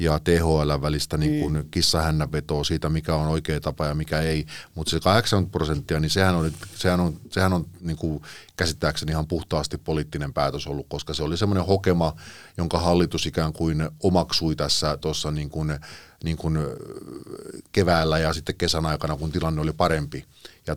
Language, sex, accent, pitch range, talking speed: Finnish, male, native, 80-90 Hz, 160 wpm